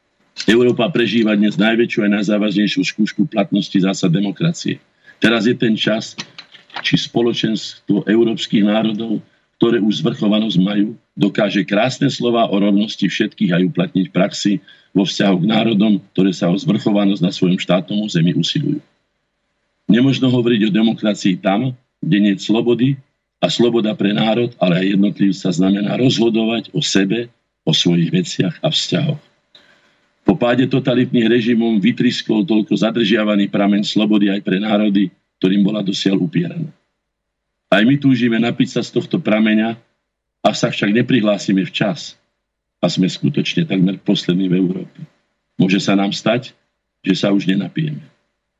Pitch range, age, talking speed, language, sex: 100-120 Hz, 50-69, 140 wpm, Slovak, male